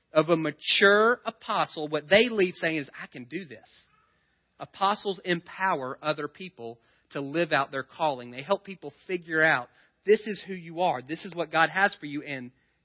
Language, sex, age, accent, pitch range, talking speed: English, male, 40-59, American, 155-195 Hz, 185 wpm